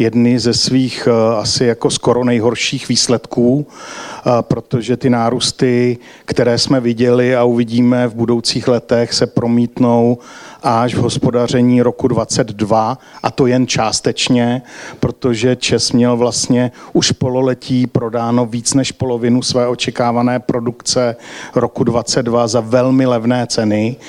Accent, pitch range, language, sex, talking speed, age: native, 120-130 Hz, Czech, male, 120 wpm, 50-69